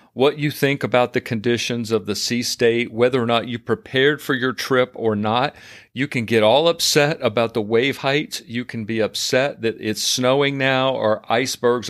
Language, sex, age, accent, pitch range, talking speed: English, male, 40-59, American, 115-145 Hz, 195 wpm